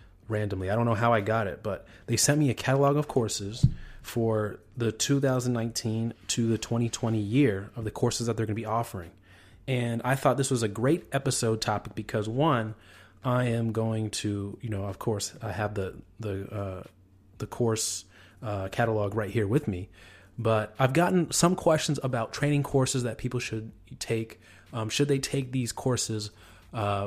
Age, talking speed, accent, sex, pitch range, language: 30-49, 180 wpm, American, male, 105-130 Hz, English